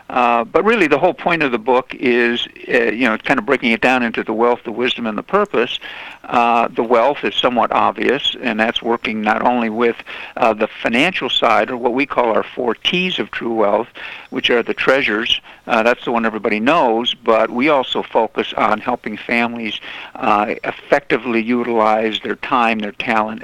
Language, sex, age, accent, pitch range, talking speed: English, male, 60-79, American, 110-125 Hz, 195 wpm